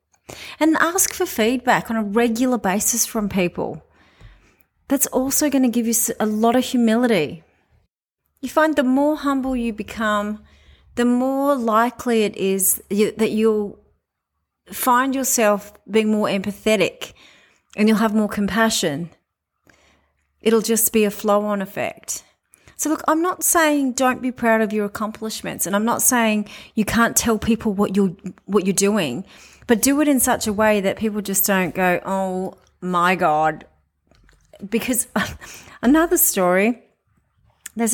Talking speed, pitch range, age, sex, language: 145 wpm, 190-245 Hz, 30-49, female, English